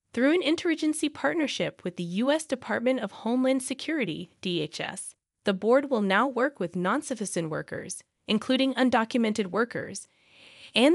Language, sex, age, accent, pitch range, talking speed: English, female, 20-39, American, 180-255 Hz, 130 wpm